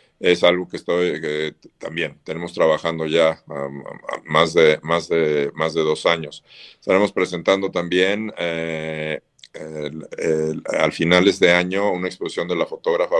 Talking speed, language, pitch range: 125 wpm, Spanish, 80-100 Hz